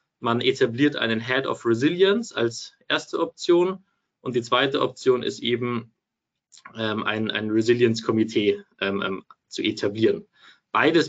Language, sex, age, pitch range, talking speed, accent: German, male, 20-39, 115-155 Hz, 120 wpm, German